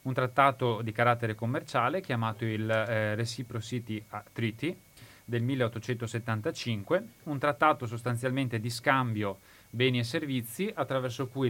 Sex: male